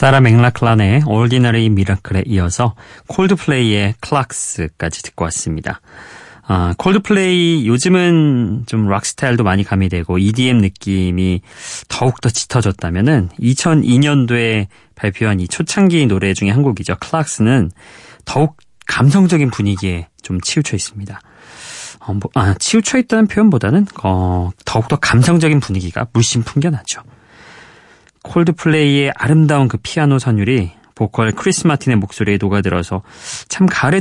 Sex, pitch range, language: male, 100-150 Hz, Korean